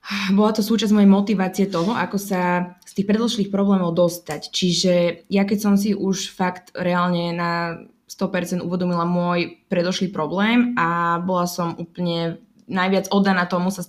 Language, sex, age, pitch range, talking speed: Slovak, female, 20-39, 170-195 Hz, 155 wpm